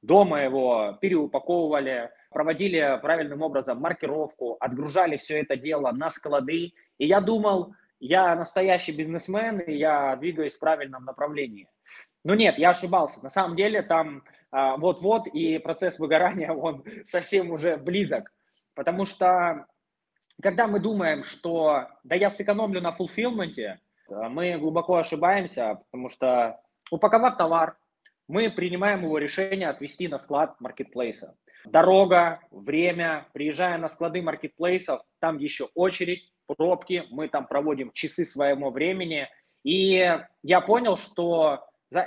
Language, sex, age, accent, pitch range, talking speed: Russian, male, 20-39, native, 150-185 Hz, 125 wpm